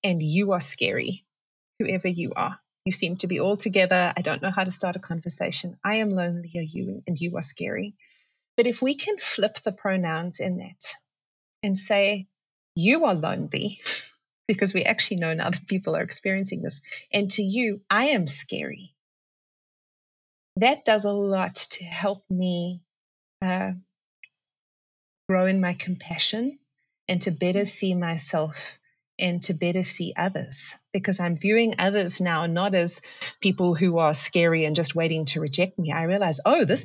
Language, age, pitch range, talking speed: English, 30-49, 175-215 Hz, 165 wpm